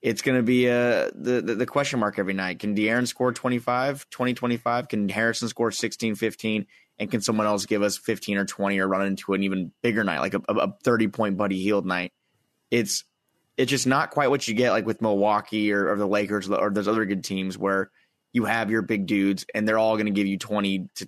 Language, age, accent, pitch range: English, 20-39, American, 105-125 Hz